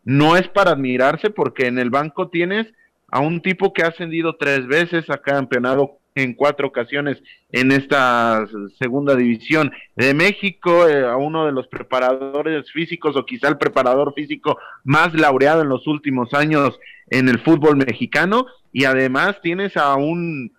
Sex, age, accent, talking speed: male, 30-49, Mexican, 160 wpm